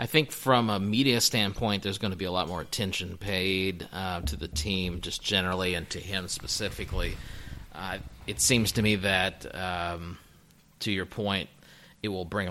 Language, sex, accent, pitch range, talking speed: English, male, American, 90-105 Hz, 180 wpm